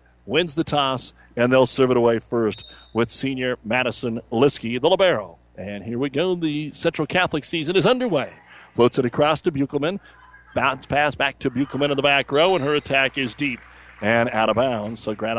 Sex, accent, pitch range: male, American, 120-150 Hz